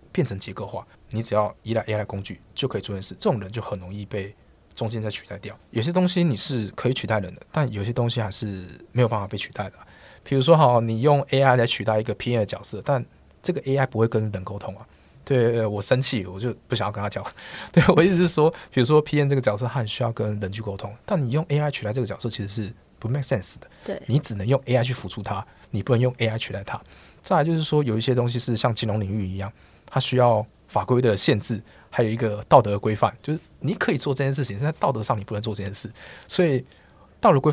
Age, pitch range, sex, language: 20-39, 105-135 Hz, male, Chinese